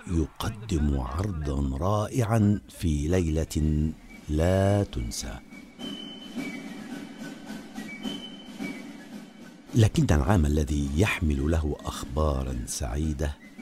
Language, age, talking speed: Arabic, 60-79, 60 wpm